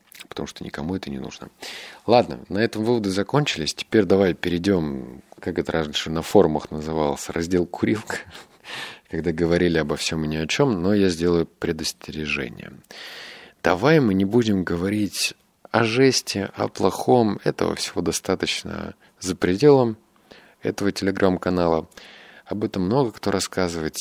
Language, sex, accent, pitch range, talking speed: Russian, male, native, 85-110 Hz, 140 wpm